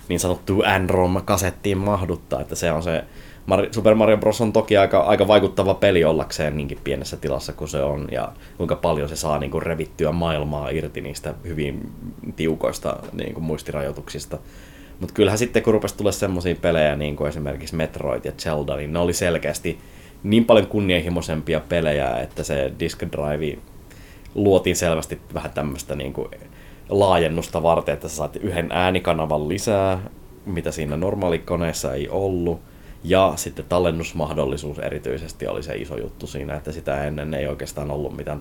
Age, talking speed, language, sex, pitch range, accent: 20-39, 160 wpm, Finnish, male, 75-90 Hz, native